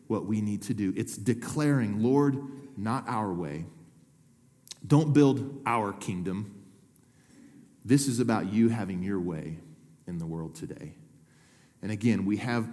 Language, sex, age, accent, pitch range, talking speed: English, male, 40-59, American, 110-140 Hz, 140 wpm